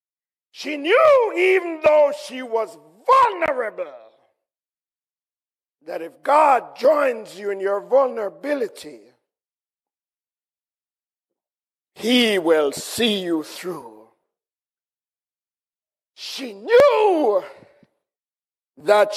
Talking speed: 70 wpm